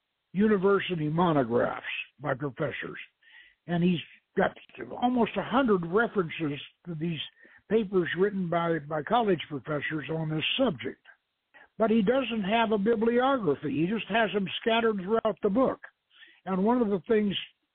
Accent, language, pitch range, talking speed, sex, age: American, English, 170-225 Hz, 135 wpm, male, 60-79